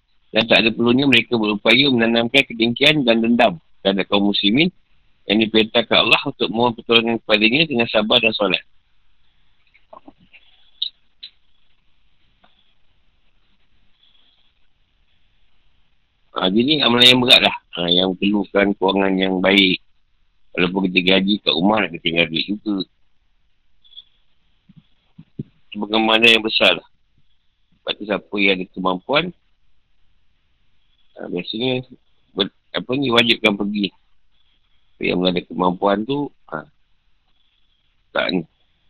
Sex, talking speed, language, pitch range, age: male, 105 wpm, Malay, 85-115 Hz, 50-69